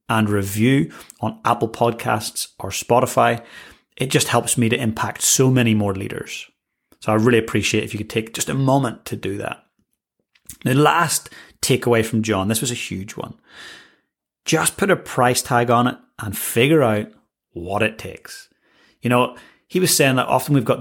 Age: 30-49